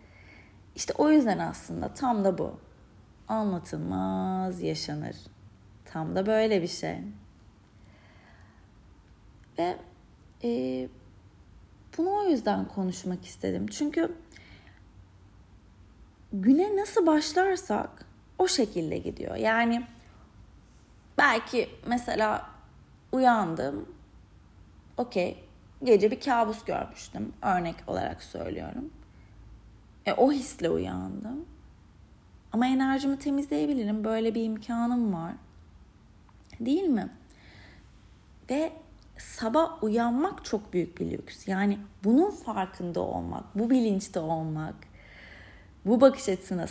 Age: 30-49